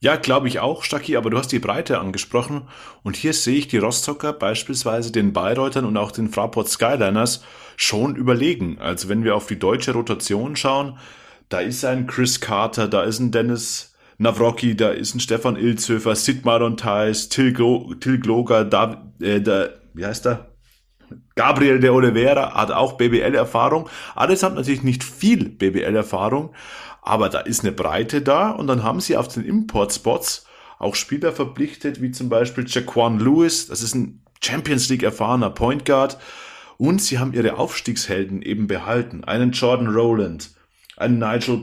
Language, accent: German, German